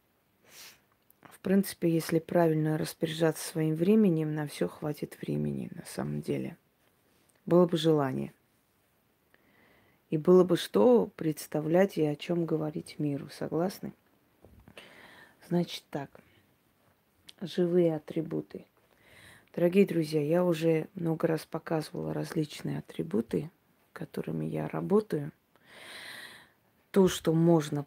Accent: native